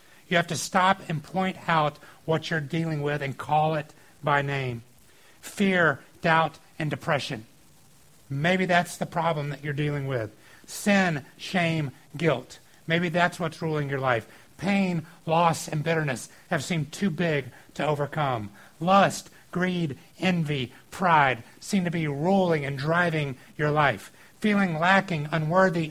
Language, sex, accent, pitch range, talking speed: English, male, American, 140-175 Hz, 145 wpm